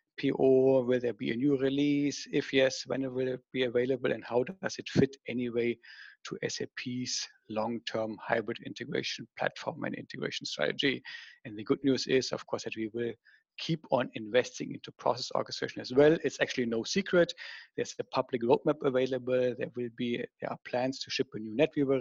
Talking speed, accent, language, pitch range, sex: 175 wpm, German, English, 120-135 Hz, male